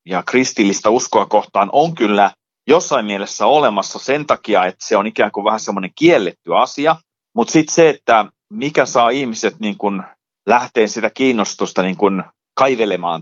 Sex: male